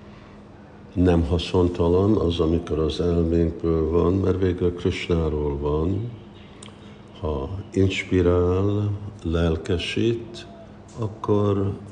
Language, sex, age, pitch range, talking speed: Hungarian, male, 50-69, 75-90 Hz, 75 wpm